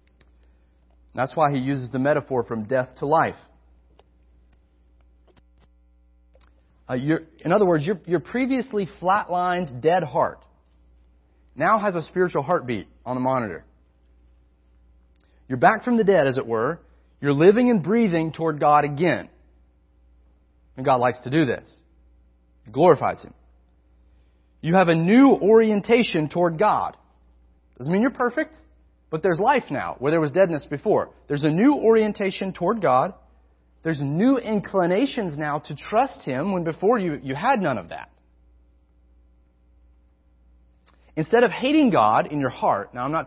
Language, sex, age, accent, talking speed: English, male, 40-59, American, 140 wpm